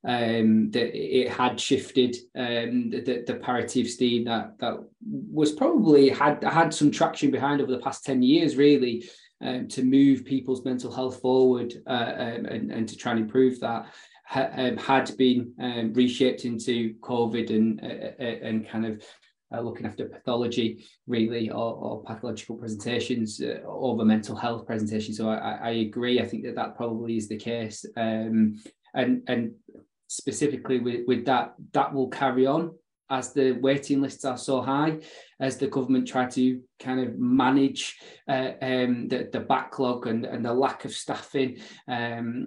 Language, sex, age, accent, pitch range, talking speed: English, male, 20-39, British, 120-140 Hz, 170 wpm